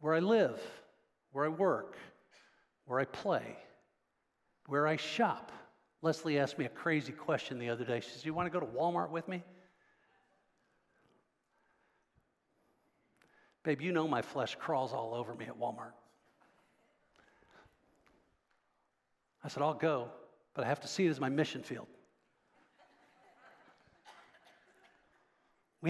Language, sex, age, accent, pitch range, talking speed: English, male, 60-79, American, 170-240 Hz, 135 wpm